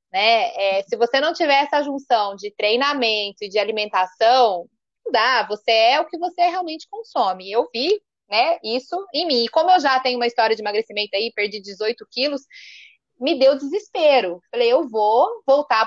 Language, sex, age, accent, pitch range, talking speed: Portuguese, female, 20-39, Brazilian, 225-305 Hz, 180 wpm